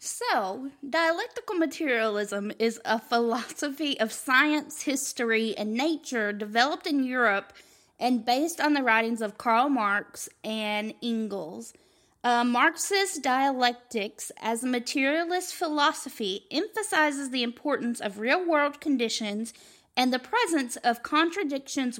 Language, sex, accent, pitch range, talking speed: English, female, American, 220-285 Hz, 115 wpm